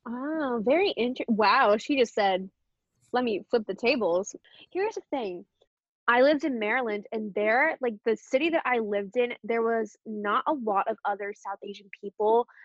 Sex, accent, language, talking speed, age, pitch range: female, American, English, 180 wpm, 10-29, 210-255 Hz